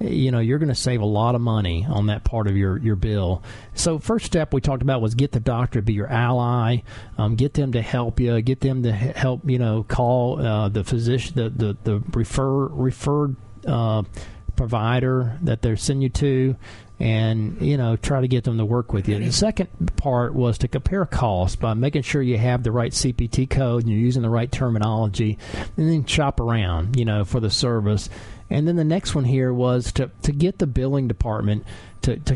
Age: 40-59